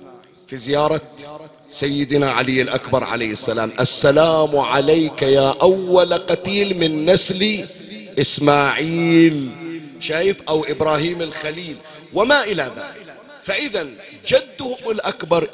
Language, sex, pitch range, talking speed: Arabic, male, 150-200 Hz, 95 wpm